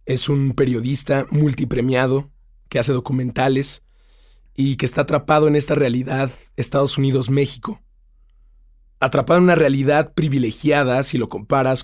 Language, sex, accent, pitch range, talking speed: Spanish, male, Mexican, 120-140 Hz, 120 wpm